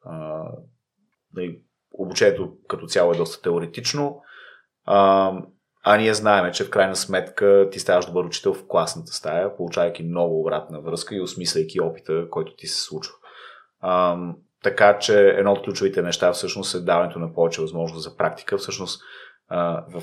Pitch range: 85-100 Hz